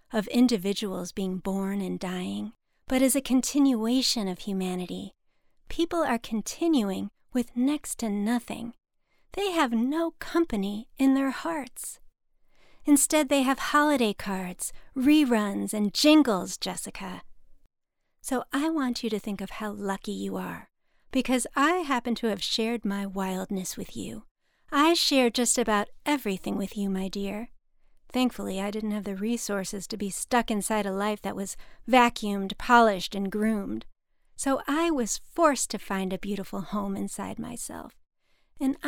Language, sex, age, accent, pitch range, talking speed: English, female, 40-59, American, 200-265 Hz, 145 wpm